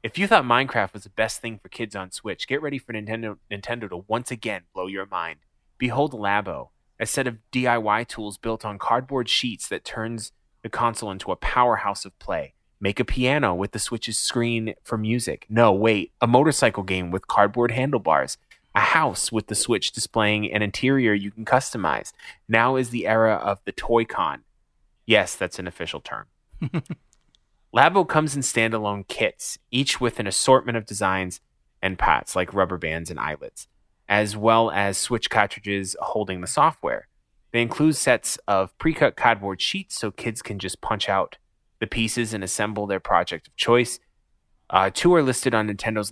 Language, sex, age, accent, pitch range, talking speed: English, male, 20-39, American, 100-120 Hz, 175 wpm